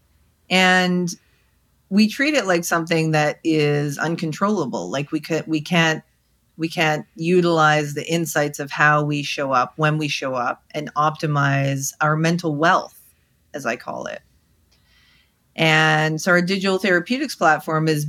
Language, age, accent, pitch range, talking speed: English, 40-59, American, 145-165 Hz, 135 wpm